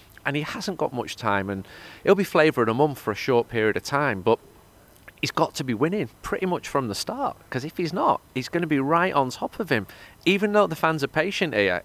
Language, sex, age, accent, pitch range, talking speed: English, male, 30-49, British, 105-155 Hz, 250 wpm